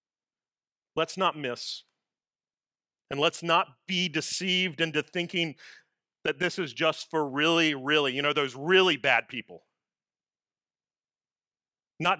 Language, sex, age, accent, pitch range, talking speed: English, male, 40-59, American, 130-175 Hz, 120 wpm